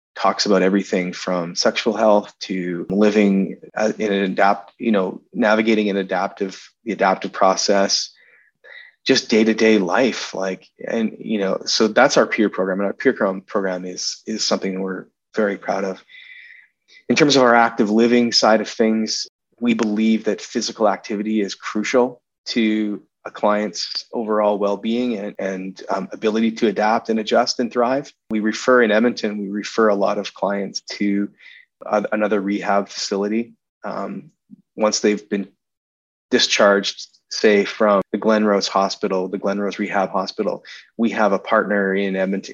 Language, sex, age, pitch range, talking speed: English, male, 30-49, 100-115 Hz, 155 wpm